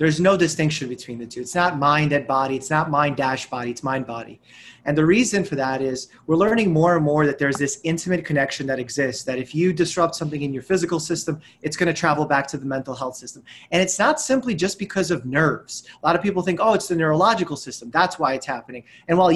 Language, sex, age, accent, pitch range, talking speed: English, male, 30-49, American, 140-180 Hz, 250 wpm